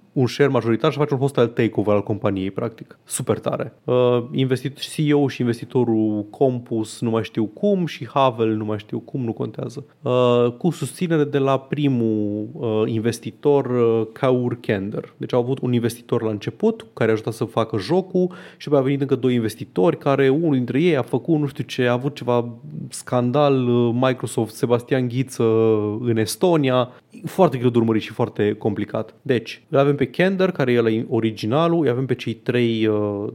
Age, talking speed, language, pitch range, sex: 30-49, 170 wpm, Romanian, 110-145 Hz, male